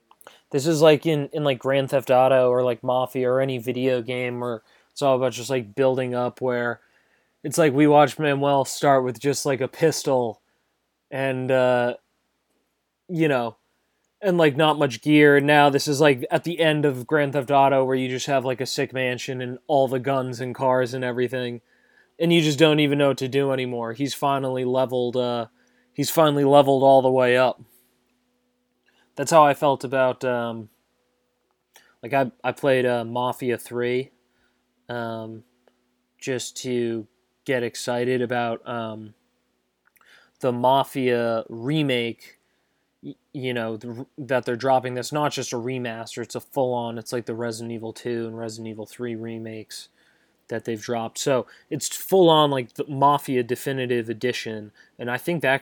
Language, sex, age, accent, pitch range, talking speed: English, male, 20-39, American, 120-140 Hz, 170 wpm